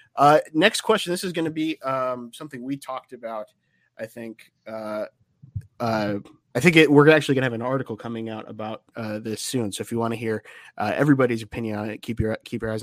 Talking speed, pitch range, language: 225 wpm, 115-145 Hz, English